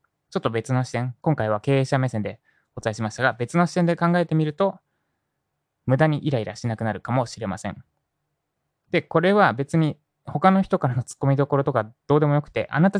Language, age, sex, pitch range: Japanese, 20-39, male, 110-160 Hz